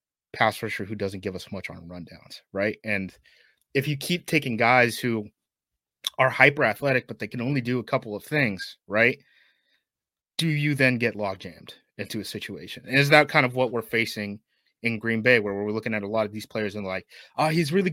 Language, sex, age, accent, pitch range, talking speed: English, male, 30-49, American, 110-135 Hz, 220 wpm